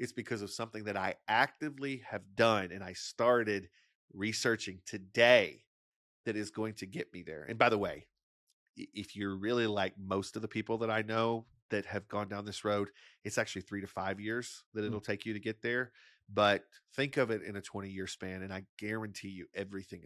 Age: 40-59